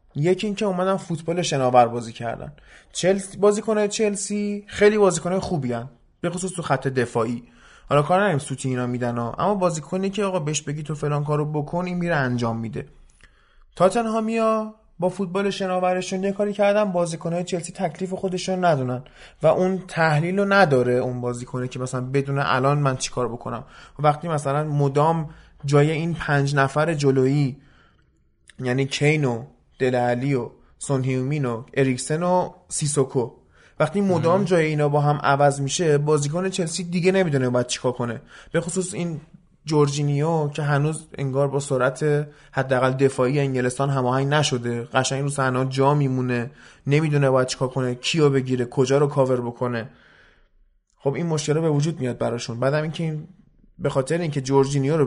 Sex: male